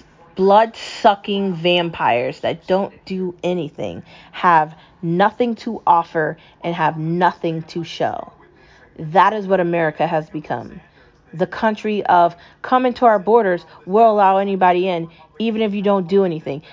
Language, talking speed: English, 135 wpm